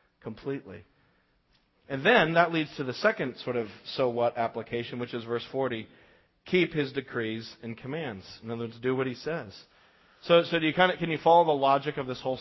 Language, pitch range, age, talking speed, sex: English, 115-140 Hz, 40-59, 210 wpm, male